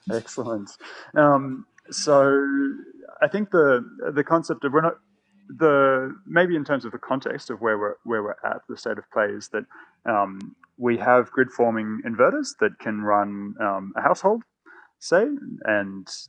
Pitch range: 100-120 Hz